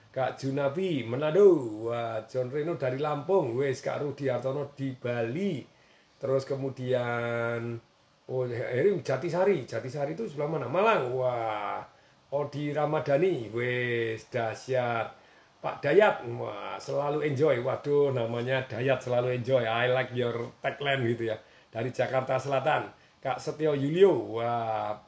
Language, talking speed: Indonesian, 125 wpm